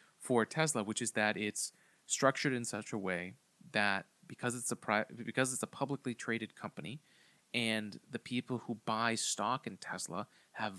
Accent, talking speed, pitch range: American, 170 wpm, 105-120 Hz